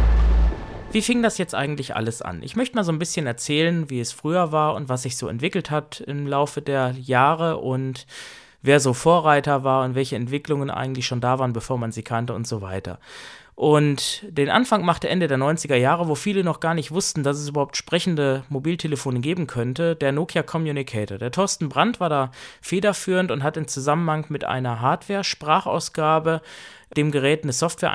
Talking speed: 190 wpm